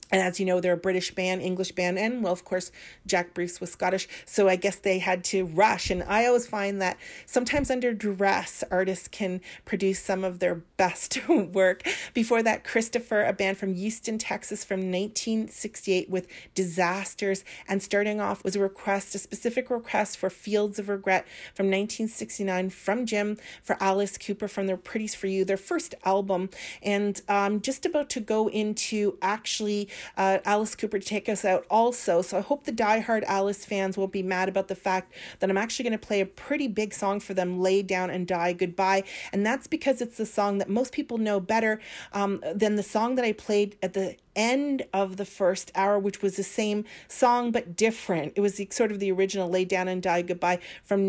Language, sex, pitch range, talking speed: English, female, 185-215 Hz, 200 wpm